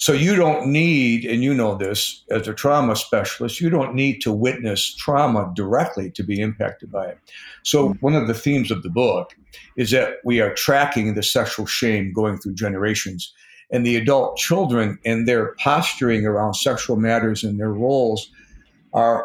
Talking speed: 180 wpm